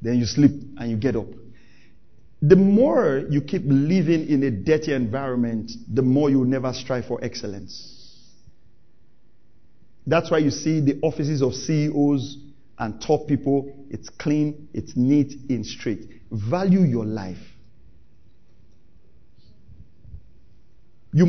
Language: English